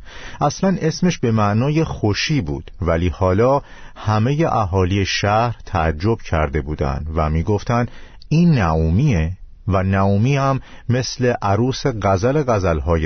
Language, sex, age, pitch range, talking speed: Persian, male, 50-69, 90-120 Hz, 115 wpm